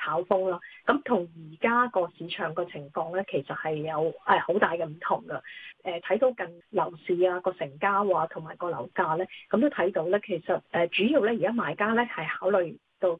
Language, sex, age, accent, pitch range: Chinese, female, 20-39, native, 175-215 Hz